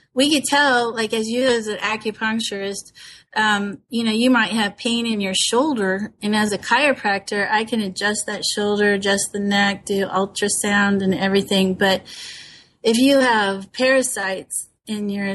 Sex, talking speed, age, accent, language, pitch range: female, 165 wpm, 30-49, American, English, 195-225 Hz